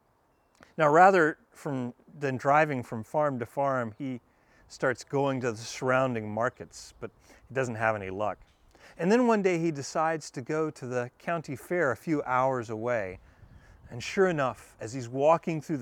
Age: 40-59